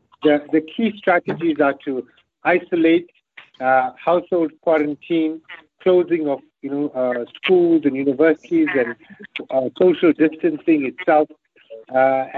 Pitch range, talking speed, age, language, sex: 135-170 Hz, 115 wpm, 60-79, English, male